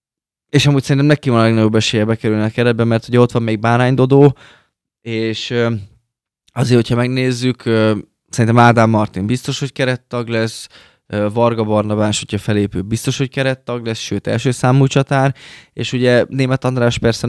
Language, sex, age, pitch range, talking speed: Hungarian, male, 20-39, 105-120 Hz, 160 wpm